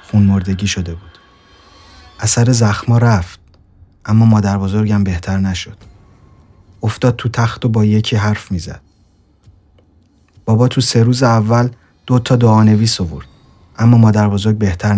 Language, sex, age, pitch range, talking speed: English, male, 30-49, 95-115 Hz, 130 wpm